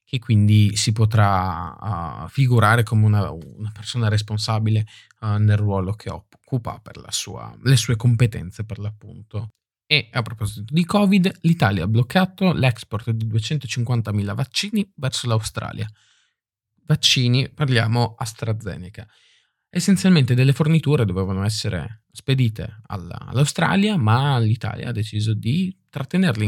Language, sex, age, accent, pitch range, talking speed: Italian, male, 20-39, native, 105-130 Hz, 125 wpm